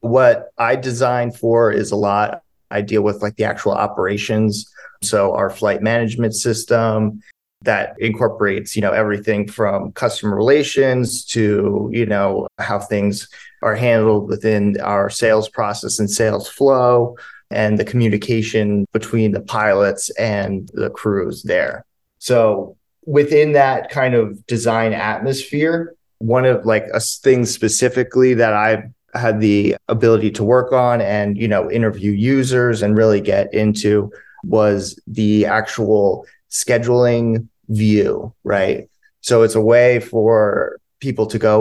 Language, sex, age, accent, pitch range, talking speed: English, male, 30-49, American, 105-120 Hz, 135 wpm